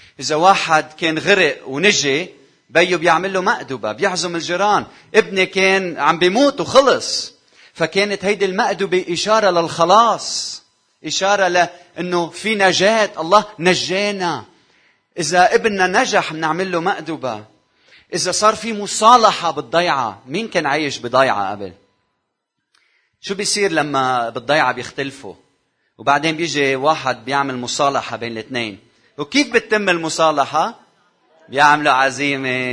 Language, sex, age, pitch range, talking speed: Arabic, male, 30-49, 130-185 Hz, 110 wpm